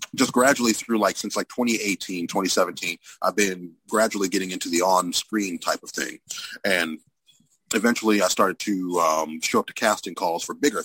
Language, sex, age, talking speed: English, male, 30-49, 170 wpm